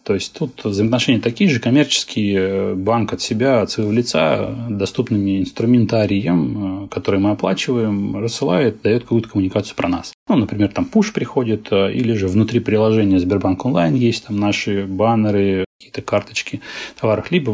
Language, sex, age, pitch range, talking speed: Russian, male, 30-49, 95-115 Hz, 145 wpm